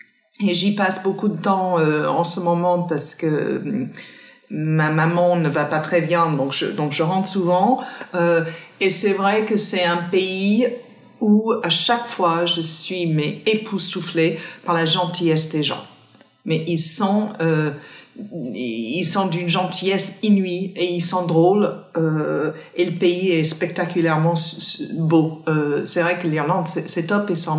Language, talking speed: French, 155 wpm